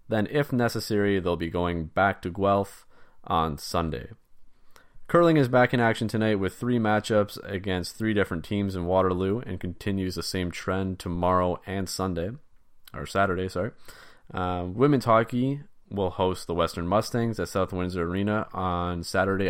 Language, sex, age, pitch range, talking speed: English, male, 20-39, 90-115 Hz, 155 wpm